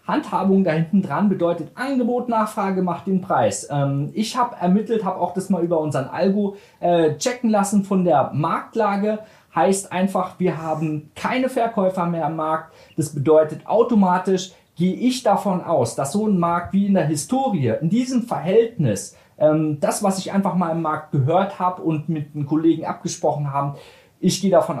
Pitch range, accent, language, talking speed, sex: 155-200 Hz, German, German, 170 wpm, male